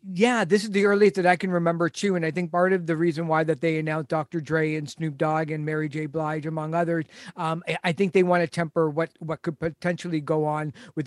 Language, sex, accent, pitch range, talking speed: English, male, American, 155-170 Hz, 250 wpm